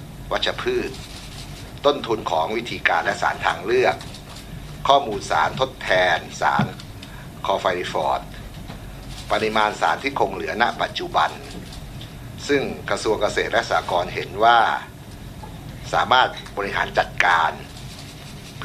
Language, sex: Thai, male